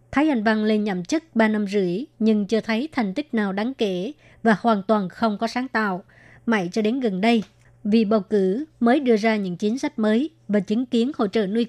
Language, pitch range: Vietnamese, 205-235 Hz